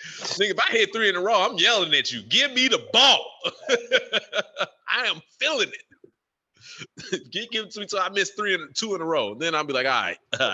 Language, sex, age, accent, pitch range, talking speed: English, male, 20-39, American, 115-185 Hz, 235 wpm